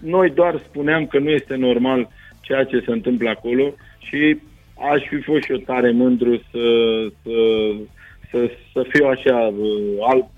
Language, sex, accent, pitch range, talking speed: Romanian, male, native, 110-130 Hz, 155 wpm